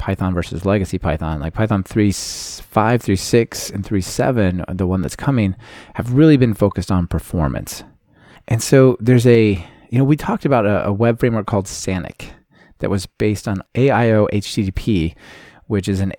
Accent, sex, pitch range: American, male, 95-120 Hz